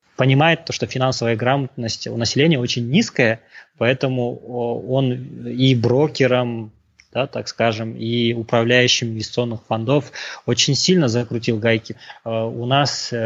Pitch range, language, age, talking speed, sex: 115-135 Hz, Russian, 20-39, 120 wpm, male